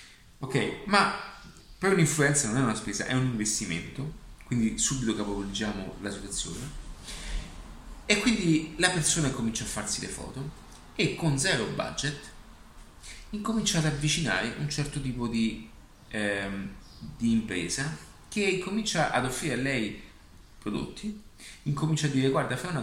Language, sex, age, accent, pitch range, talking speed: Italian, male, 30-49, native, 110-150 Hz, 135 wpm